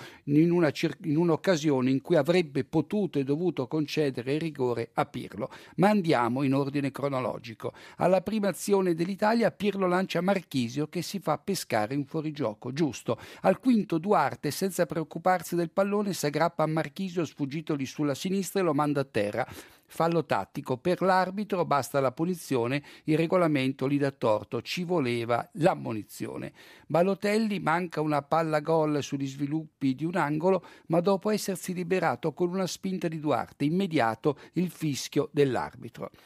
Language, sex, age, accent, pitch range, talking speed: Italian, male, 60-79, native, 140-180 Hz, 150 wpm